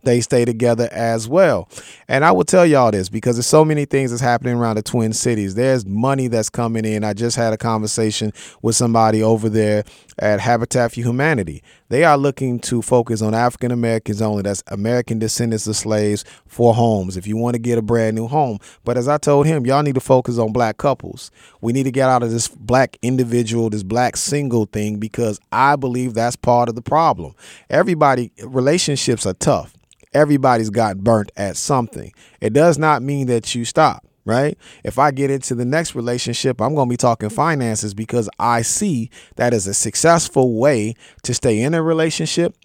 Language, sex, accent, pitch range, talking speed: English, male, American, 110-140 Hz, 200 wpm